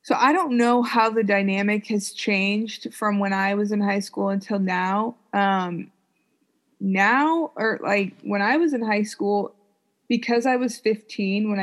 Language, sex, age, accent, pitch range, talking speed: English, female, 20-39, American, 185-210 Hz, 170 wpm